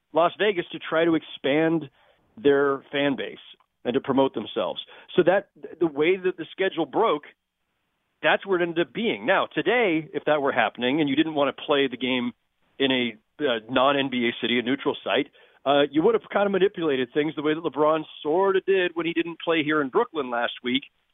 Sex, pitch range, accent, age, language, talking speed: male, 140-175 Hz, American, 40-59, English, 205 wpm